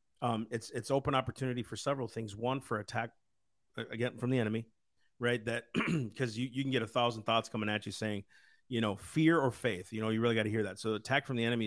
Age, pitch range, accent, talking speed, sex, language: 40-59, 110-135 Hz, American, 240 wpm, male, English